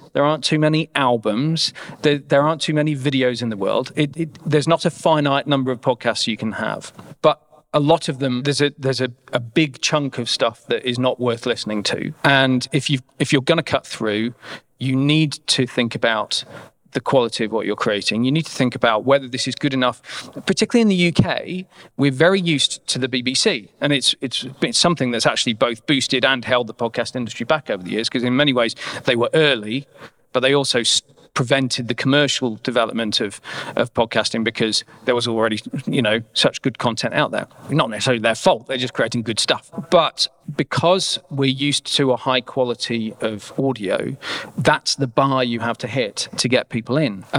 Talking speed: 205 wpm